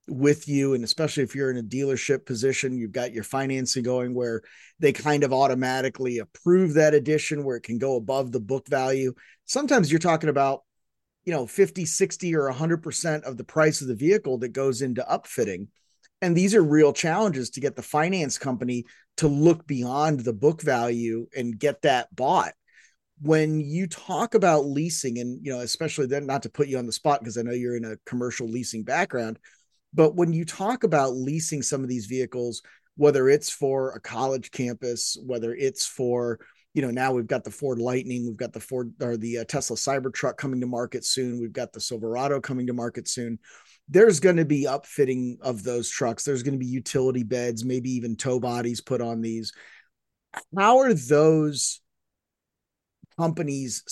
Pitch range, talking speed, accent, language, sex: 120-150 Hz, 190 wpm, American, English, male